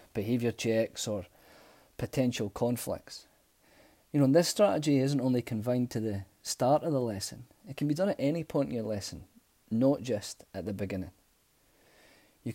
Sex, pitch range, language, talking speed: male, 110-135 Hz, English, 165 wpm